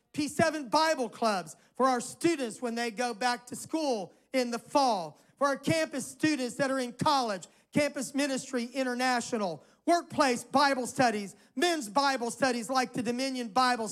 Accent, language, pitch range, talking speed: American, English, 225-280 Hz, 155 wpm